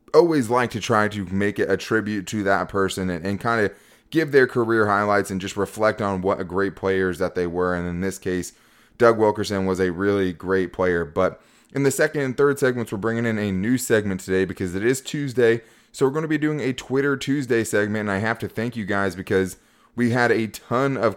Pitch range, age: 95-115 Hz, 20-39